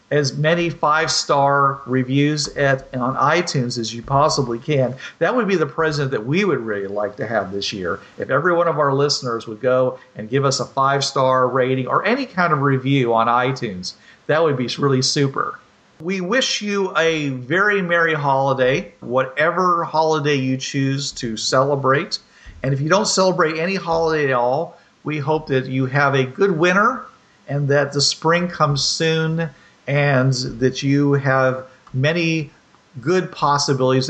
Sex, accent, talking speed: male, American, 165 wpm